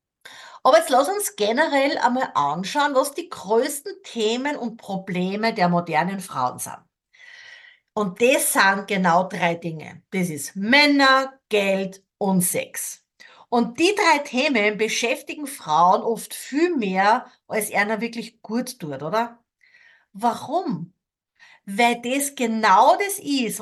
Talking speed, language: 125 wpm, German